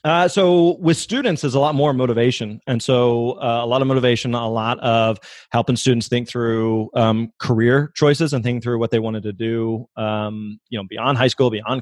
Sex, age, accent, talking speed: male, 30-49, American, 210 wpm